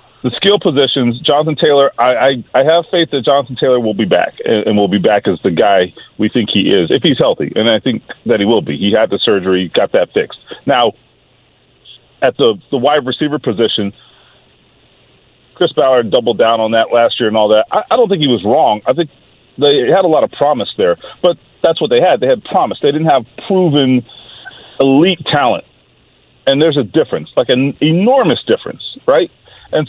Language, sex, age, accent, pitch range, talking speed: English, male, 40-59, American, 125-185 Hz, 205 wpm